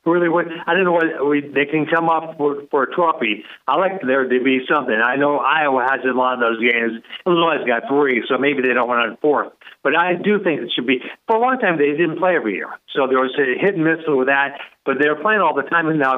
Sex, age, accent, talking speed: male, 60-79, American, 260 wpm